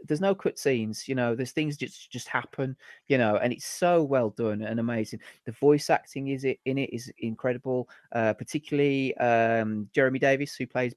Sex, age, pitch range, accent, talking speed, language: male, 30-49, 110-135 Hz, British, 195 wpm, English